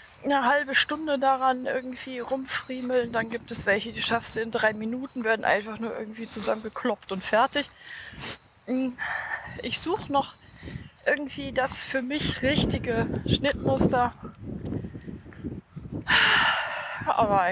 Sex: female